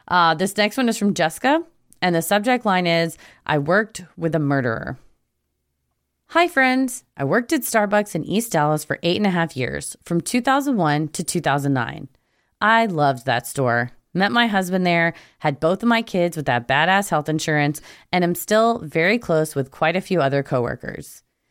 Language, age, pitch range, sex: English, 30-49, 140-210 Hz, female